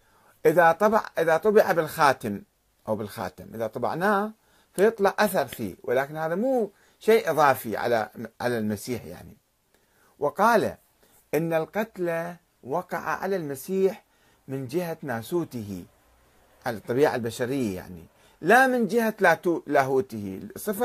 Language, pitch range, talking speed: Arabic, 115-190 Hz, 110 wpm